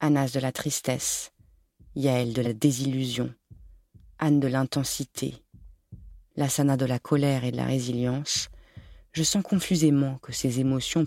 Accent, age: French, 30-49